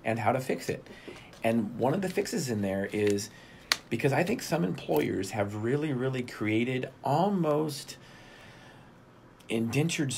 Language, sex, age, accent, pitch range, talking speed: English, male, 40-59, American, 105-135 Hz, 140 wpm